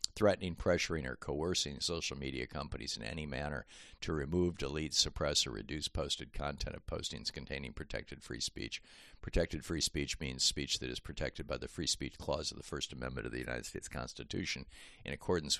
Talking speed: 185 wpm